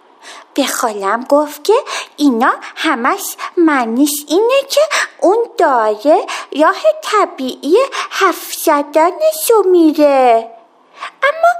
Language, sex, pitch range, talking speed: Persian, female, 300-390 Hz, 85 wpm